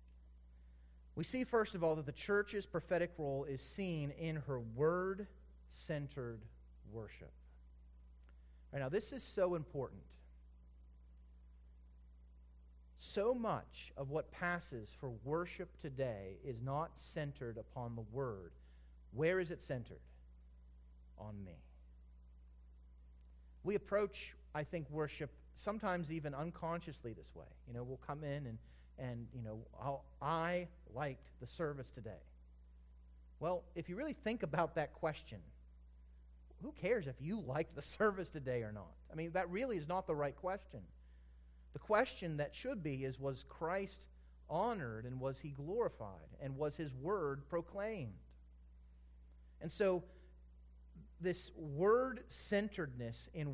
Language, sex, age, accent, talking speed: English, male, 30-49, American, 130 wpm